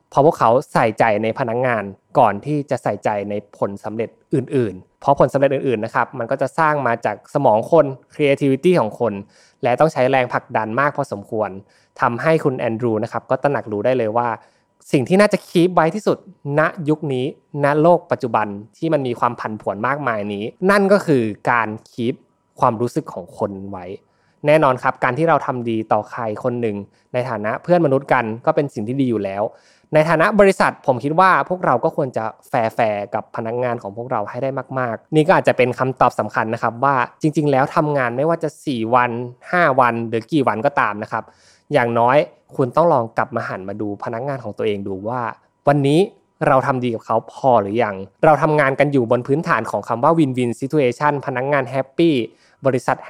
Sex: male